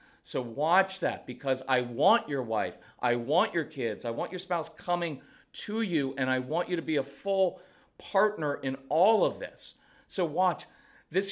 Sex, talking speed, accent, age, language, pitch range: male, 185 wpm, American, 40-59, English, 150-210 Hz